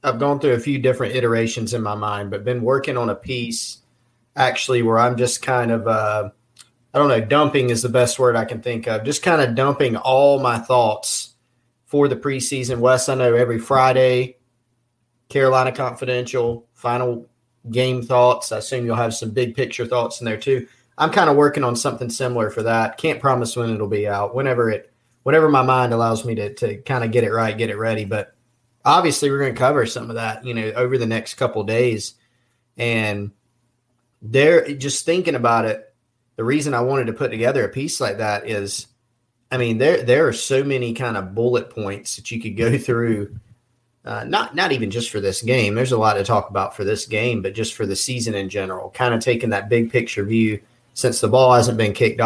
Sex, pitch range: male, 115-125 Hz